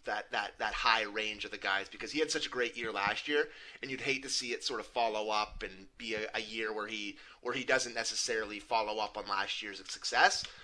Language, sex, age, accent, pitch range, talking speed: English, male, 30-49, American, 115-145 Hz, 250 wpm